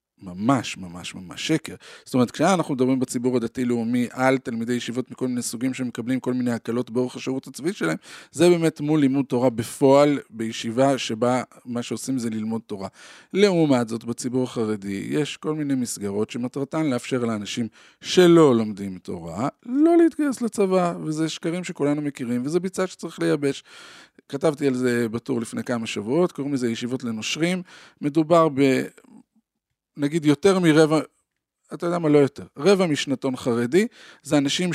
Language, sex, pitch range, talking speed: Hebrew, male, 120-160 Hz, 145 wpm